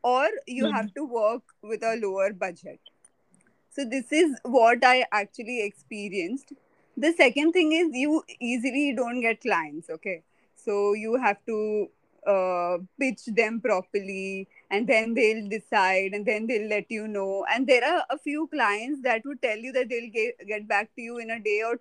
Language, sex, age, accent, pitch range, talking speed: English, female, 20-39, Indian, 200-255 Hz, 180 wpm